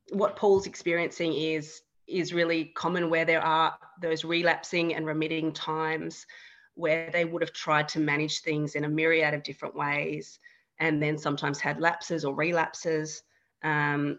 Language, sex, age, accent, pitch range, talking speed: English, female, 30-49, Australian, 155-180 Hz, 155 wpm